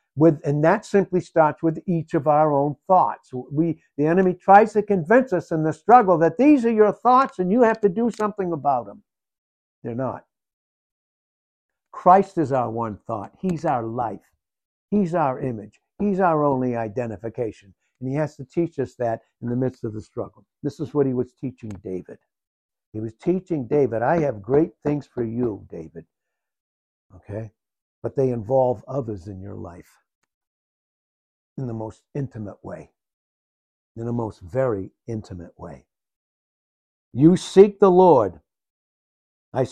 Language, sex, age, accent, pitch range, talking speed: English, male, 60-79, American, 120-180 Hz, 160 wpm